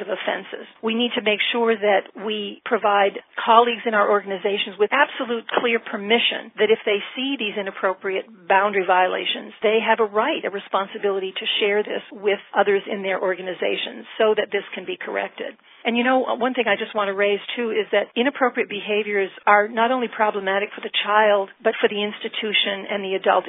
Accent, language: American, English